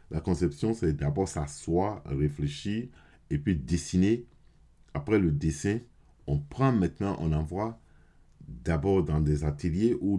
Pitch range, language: 75-95 Hz, French